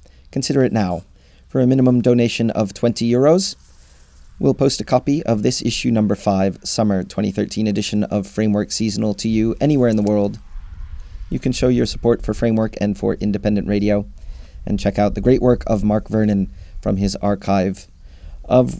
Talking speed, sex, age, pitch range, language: 175 wpm, male, 30-49, 95-120 Hz, English